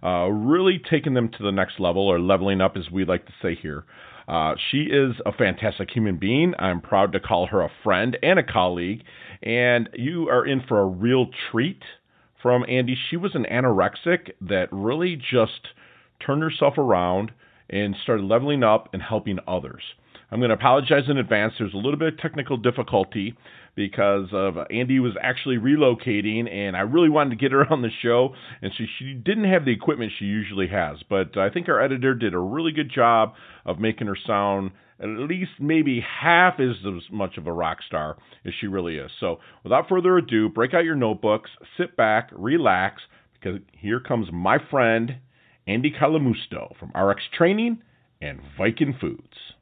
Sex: male